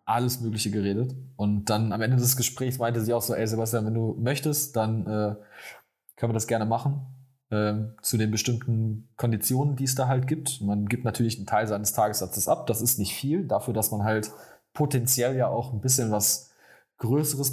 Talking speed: 200 wpm